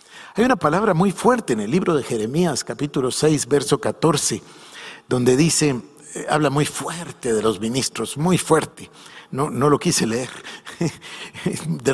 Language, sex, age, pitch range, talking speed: Spanish, male, 50-69, 130-180 Hz, 150 wpm